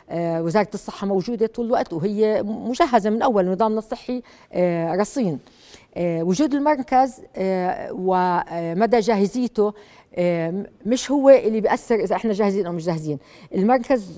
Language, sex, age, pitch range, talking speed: Arabic, female, 50-69, 180-230 Hz, 115 wpm